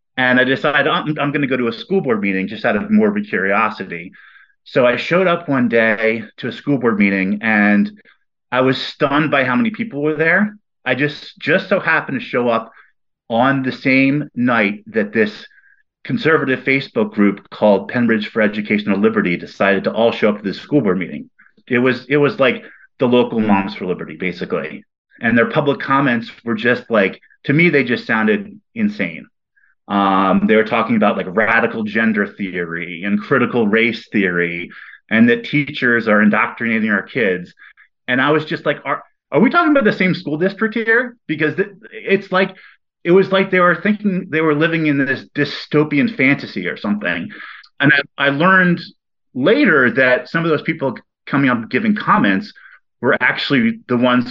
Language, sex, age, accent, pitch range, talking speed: English, male, 30-49, American, 115-180 Hz, 185 wpm